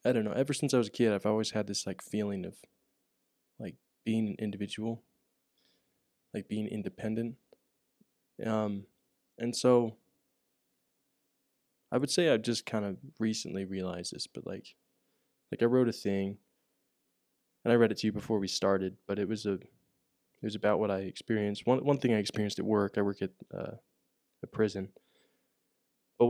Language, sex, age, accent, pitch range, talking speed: English, male, 20-39, American, 100-115 Hz, 175 wpm